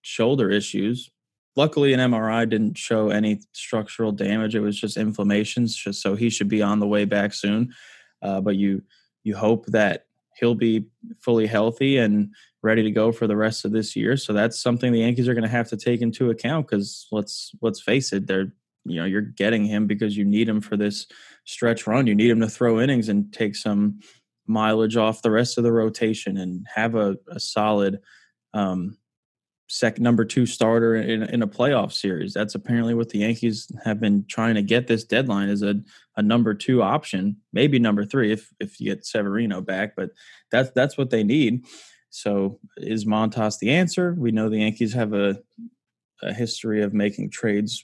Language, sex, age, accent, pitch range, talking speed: English, male, 20-39, American, 105-120 Hz, 195 wpm